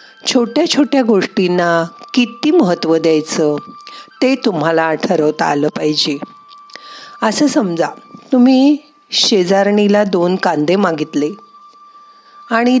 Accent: native